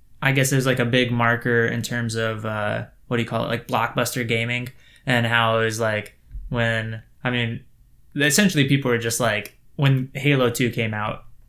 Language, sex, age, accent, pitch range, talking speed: English, male, 10-29, American, 115-130 Hz, 195 wpm